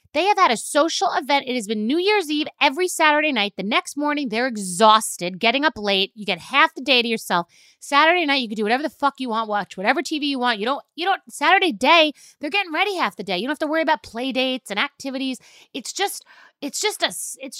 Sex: female